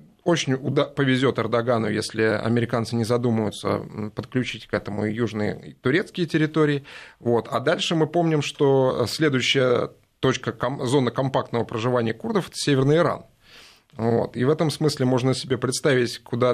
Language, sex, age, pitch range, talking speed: Russian, male, 20-39, 115-145 Hz, 125 wpm